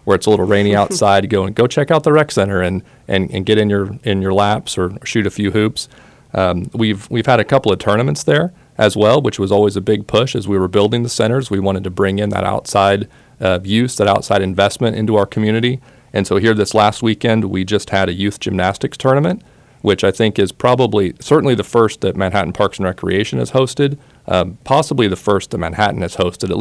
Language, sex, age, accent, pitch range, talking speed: English, male, 40-59, American, 95-110 Hz, 230 wpm